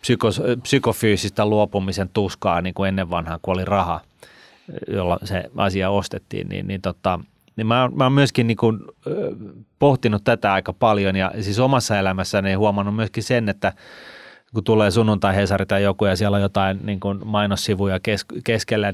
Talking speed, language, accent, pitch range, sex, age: 150 wpm, Finnish, native, 100-125 Hz, male, 30-49